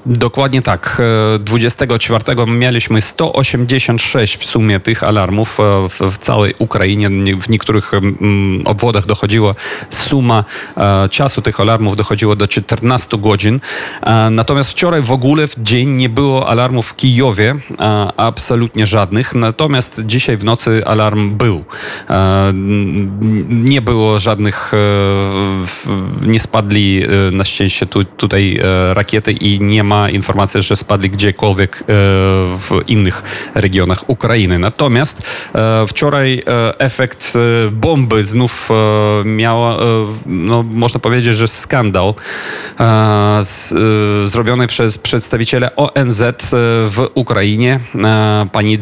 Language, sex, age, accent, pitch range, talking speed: Polish, male, 30-49, native, 105-120 Hz, 100 wpm